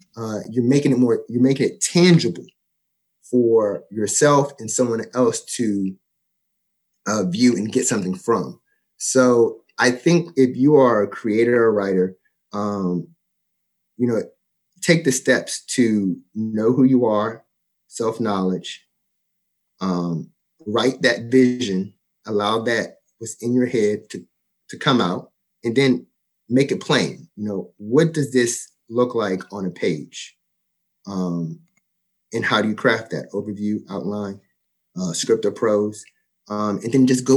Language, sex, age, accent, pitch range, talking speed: English, male, 30-49, American, 100-130 Hz, 145 wpm